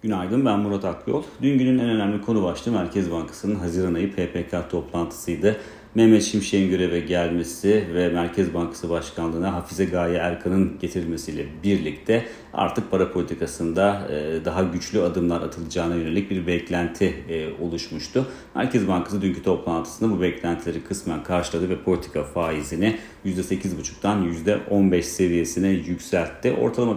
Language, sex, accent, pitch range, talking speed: Turkish, male, native, 85-100 Hz, 125 wpm